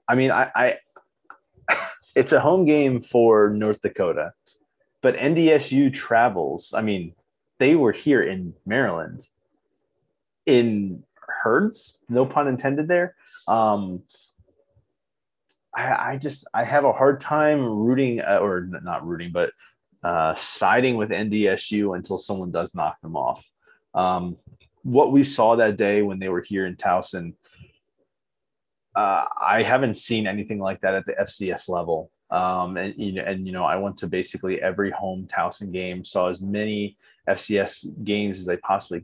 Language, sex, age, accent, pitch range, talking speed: English, male, 30-49, American, 95-120 Hz, 155 wpm